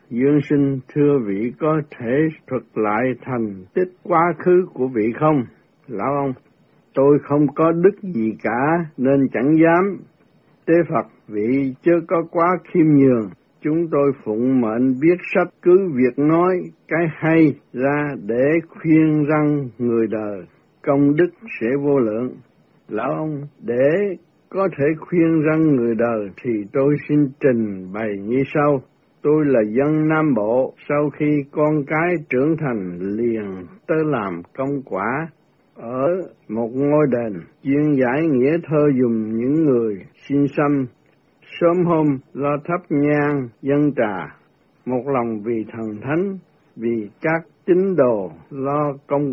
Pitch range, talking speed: 125-160 Hz, 145 wpm